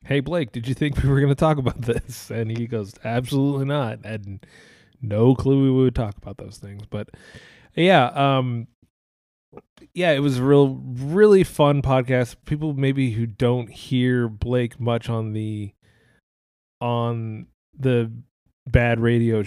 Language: English